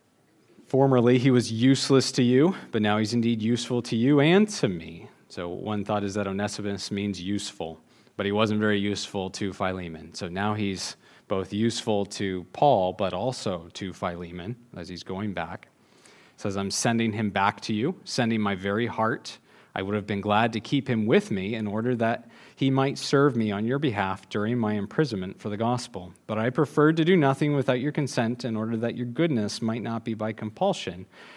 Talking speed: 195 wpm